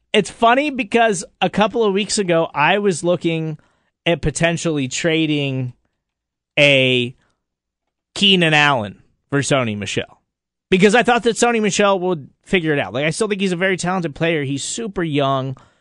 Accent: American